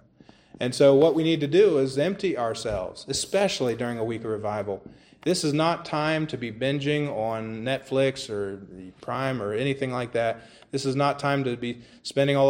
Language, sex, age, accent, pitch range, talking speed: English, male, 30-49, American, 120-140 Hz, 185 wpm